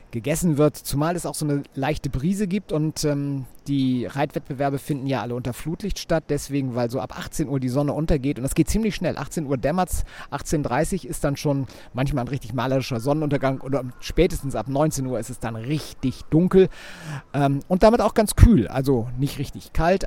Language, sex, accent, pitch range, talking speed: German, male, German, 125-155 Hz, 200 wpm